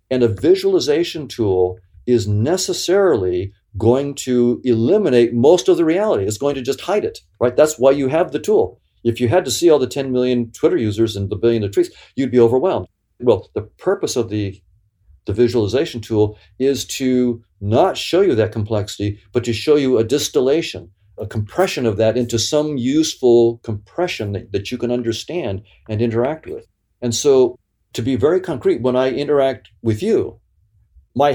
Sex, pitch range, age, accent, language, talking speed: male, 105-130 Hz, 50-69, American, English, 180 wpm